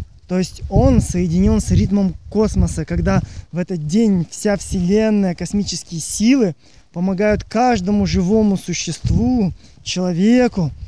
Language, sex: Russian, male